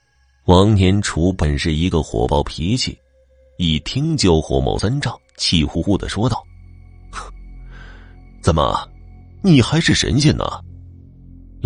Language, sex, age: Chinese, male, 30-49